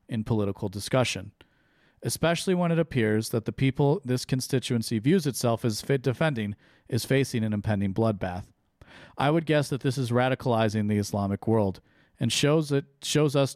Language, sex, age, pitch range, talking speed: English, male, 40-59, 110-135 Hz, 165 wpm